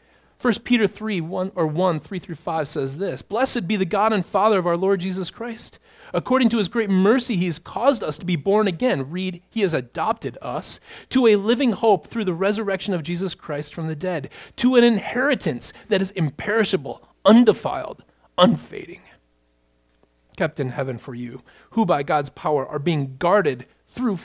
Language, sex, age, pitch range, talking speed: English, male, 30-49, 125-185 Hz, 180 wpm